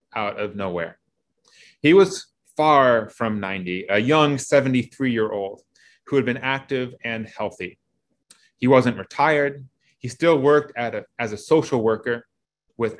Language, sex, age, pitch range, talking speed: English, male, 30-49, 120-155 Hz, 140 wpm